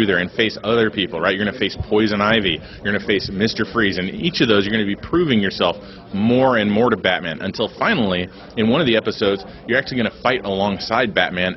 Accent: American